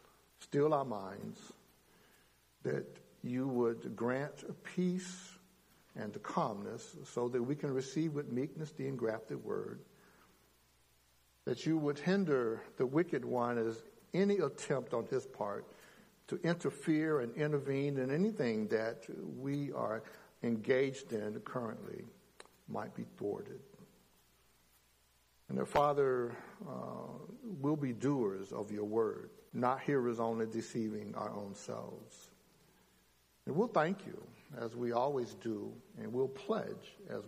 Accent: American